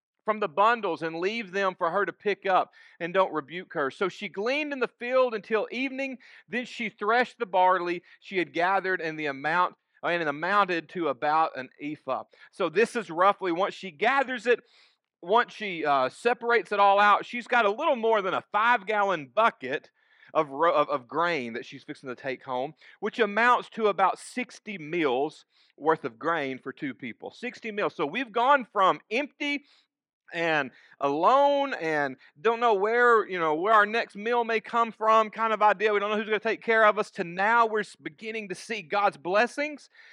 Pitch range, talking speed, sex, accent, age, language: 165-230 Hz, 195 wpm, male, American, 40-59, English